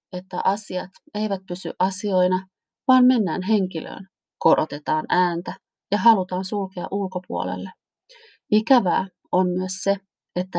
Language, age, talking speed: Finnish, 30-49, 110 wpm